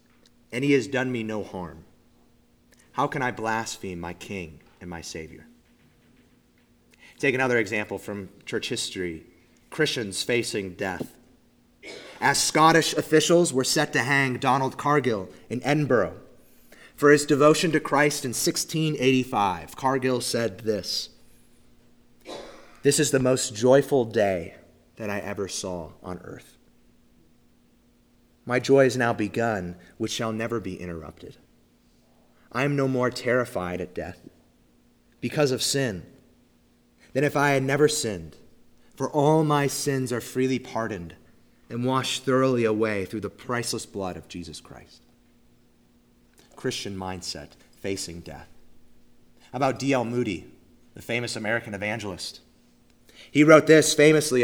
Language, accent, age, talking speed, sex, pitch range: English, American, 30-49, 130 wpm, male, 90-135 Hz